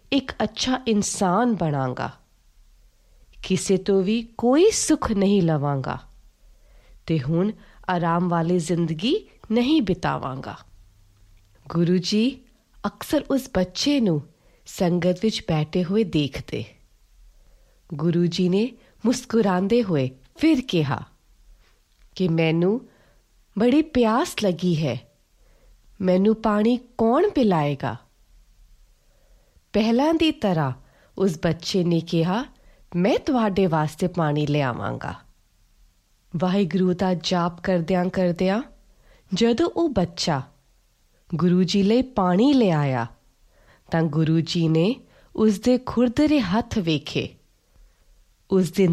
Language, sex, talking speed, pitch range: Punjabi, female, 95 wpm, 155-225 Hz